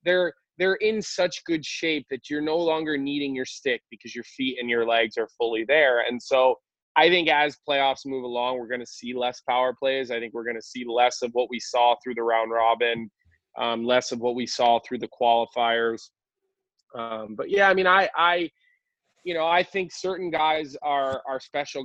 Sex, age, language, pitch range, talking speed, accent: male, 20-39, English, 120-165 Hz, 210 wpm, American